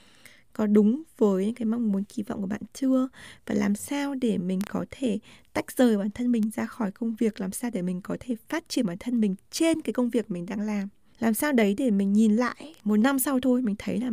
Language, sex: Vietnamese, female